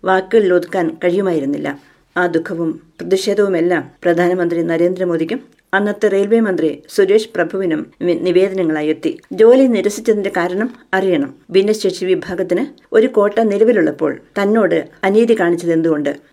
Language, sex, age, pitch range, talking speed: Malayalam, female, 50-69, 175-220 Hz, 95 wpm